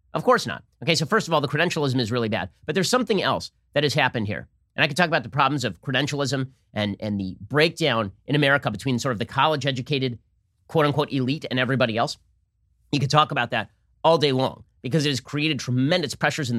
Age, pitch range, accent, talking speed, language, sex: 30-49, 115-150 Hz, American, 220 wpm, English, male